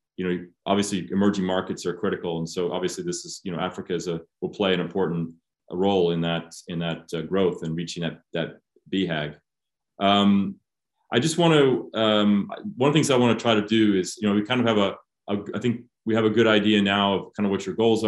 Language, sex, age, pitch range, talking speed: English, male, 30-49, 90-110 Hz, 240 wpm